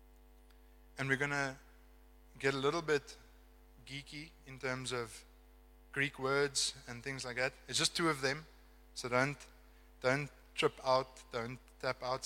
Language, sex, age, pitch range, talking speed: English, male, 20-39, 105-140 Hz, 150 wpm